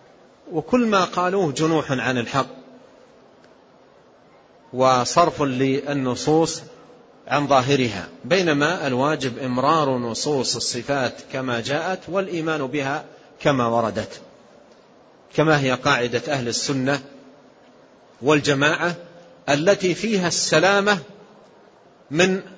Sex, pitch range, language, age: male, 130-170 Hz, Arabic, 40-59